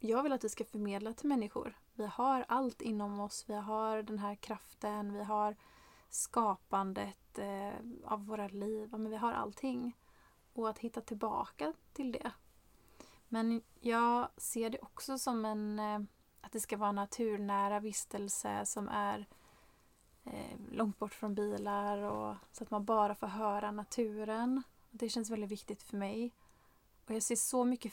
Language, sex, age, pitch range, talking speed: Swedish, female, 30-49, 210-240 Hz, 155 wpm